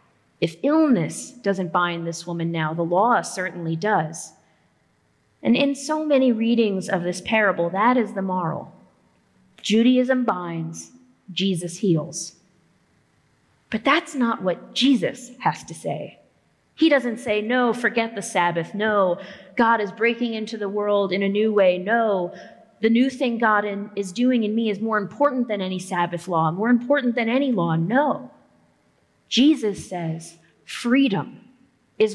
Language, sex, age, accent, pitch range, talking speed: English, female, 30-49, American, 185-240 Hz, 150 wpm